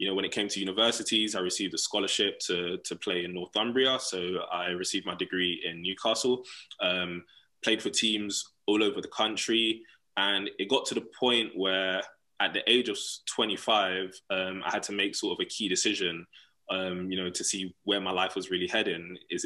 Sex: male